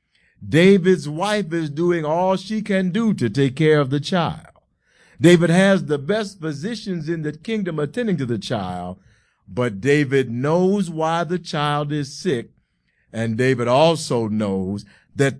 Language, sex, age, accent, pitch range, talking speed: English, male, 50-69, American, 120-175 Hz, 150 wpm